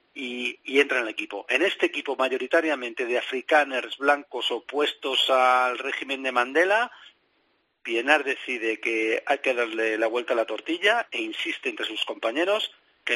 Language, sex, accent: Spanish, male, Spanish